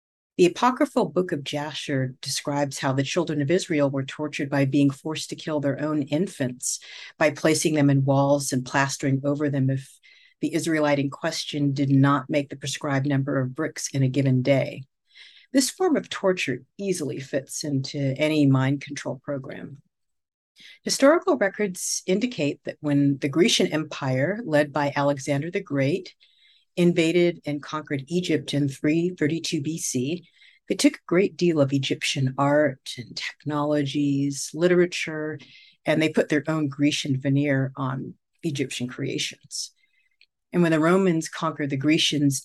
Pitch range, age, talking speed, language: 140-165 Hz, 50-69, 150 wpm, English